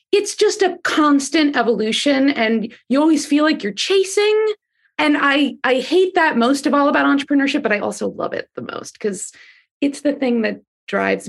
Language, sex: English, female